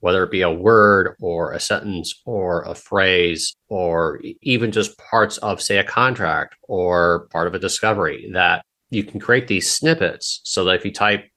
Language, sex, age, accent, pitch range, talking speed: English, male, 30-49, American, 95-110 Hz, 185 wpm